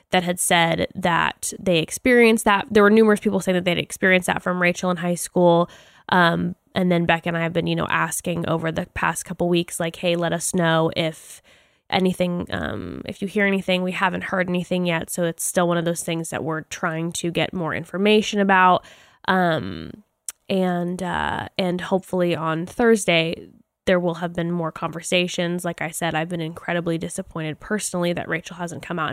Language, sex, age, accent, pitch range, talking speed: English, female, 10-29, American, 165-195 Hz, 195 wpm